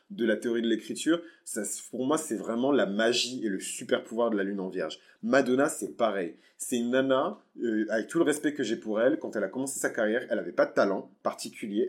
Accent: French